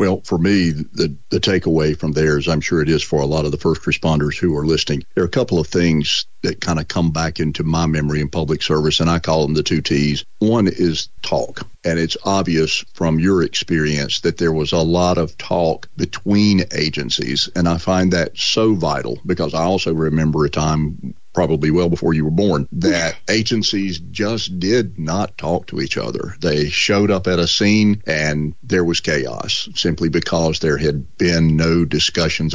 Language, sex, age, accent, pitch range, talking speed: English, male, 40-59, American, 75-90 Hz, 200 wpm